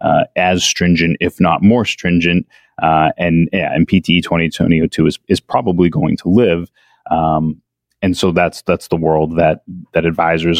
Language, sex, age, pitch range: English, male, 30-49, 85-95 Hz